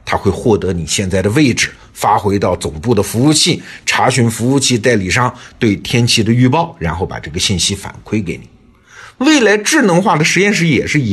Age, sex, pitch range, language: 50-69, male, 100-155 Hz, Chinese